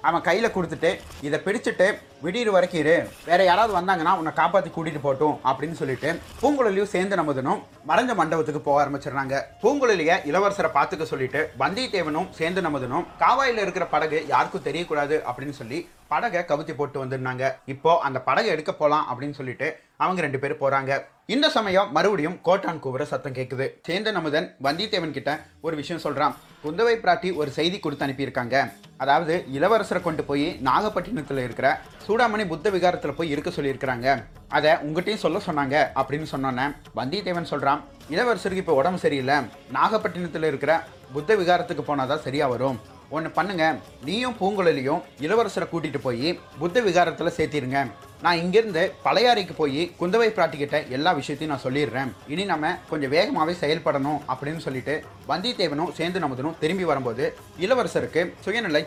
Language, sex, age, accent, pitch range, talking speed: Tamil, male, 30-49, native, 140-185 Hz, 135 wpm